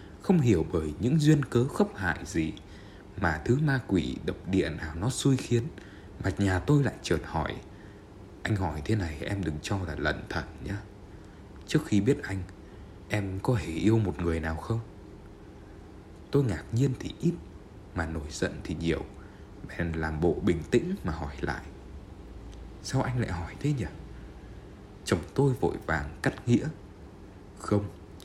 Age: 20-39